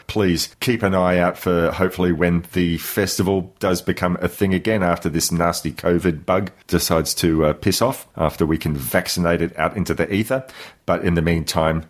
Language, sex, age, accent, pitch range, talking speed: English, male, 40-59, Australian, 85-105 Hz, 190 wpm